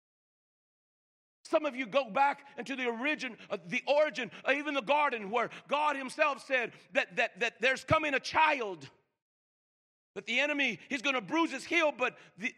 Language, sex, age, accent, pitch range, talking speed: English, male, 50-69, American, 245-310 Hz, 175 wpm